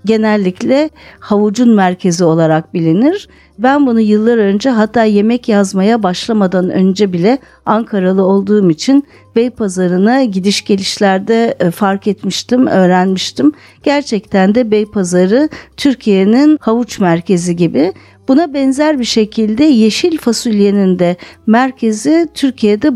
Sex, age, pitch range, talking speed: female, 50-69, 195-245 Hz, 105 wpm